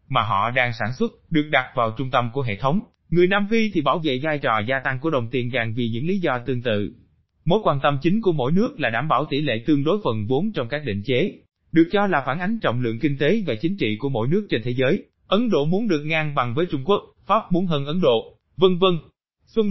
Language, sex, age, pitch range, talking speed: Vietnamese, male, 20-39, 125-185 Hz, 270 wpm